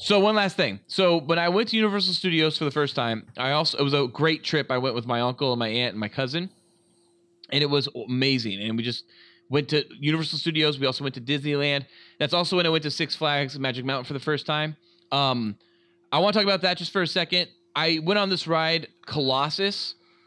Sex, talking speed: male, 235 wpm